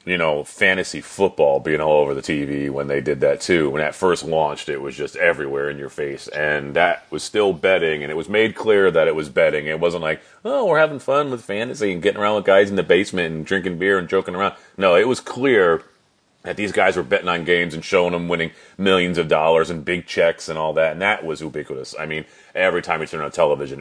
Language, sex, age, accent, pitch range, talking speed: English, male, 30-49, American, 75-100 Hz, 245 wpm